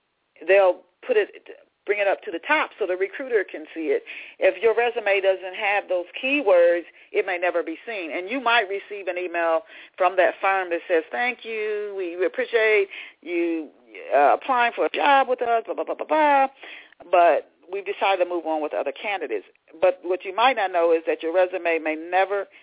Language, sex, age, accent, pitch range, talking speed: English, female, 40-59, American, 160-235 Hz, 200 wpm